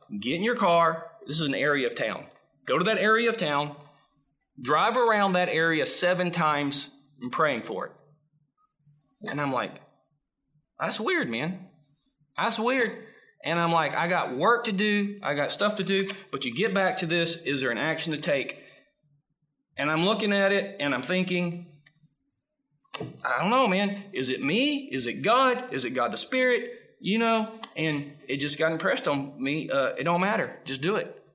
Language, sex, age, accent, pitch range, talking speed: English, male, 30-49, American, 155-225 Hz, 190 wpm